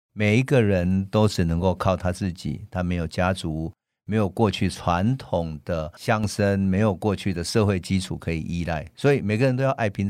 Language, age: Chinese, 50-69